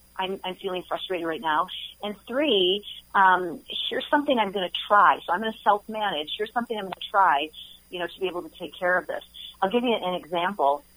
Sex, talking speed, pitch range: female, 225 wpm, 170-205 Hz